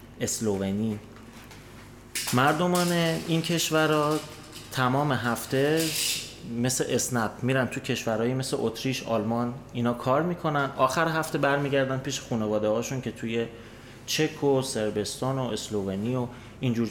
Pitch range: 115-140 Hz